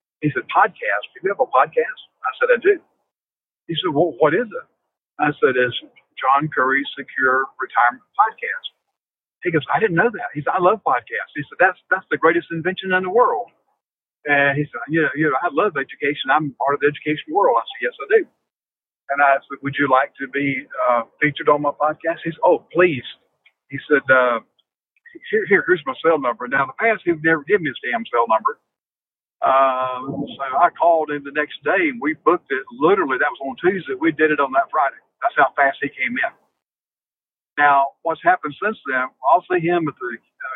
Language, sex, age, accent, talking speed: English, male, 50-69, American, 215 wpm